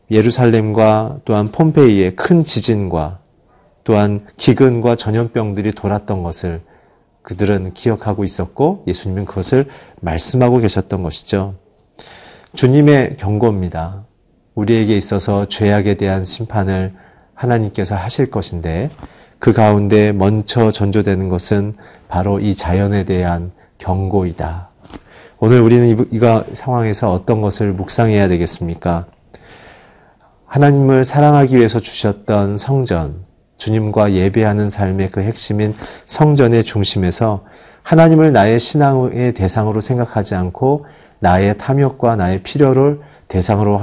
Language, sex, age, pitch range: Korean, male, 40-59, 95-120 Hz